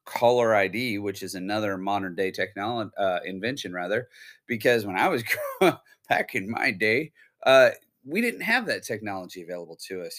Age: 30-49